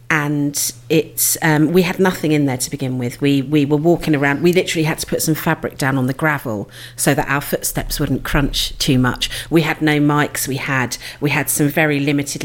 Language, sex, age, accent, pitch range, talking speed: English, female, 40-59, British, 140-165 Hz, 220 wpm